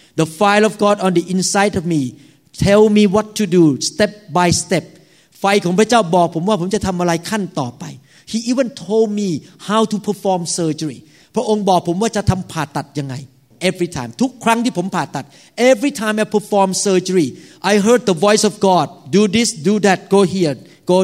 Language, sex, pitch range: Thai, male, 175-225 Hz